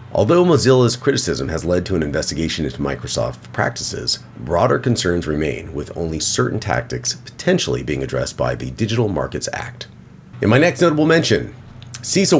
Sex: male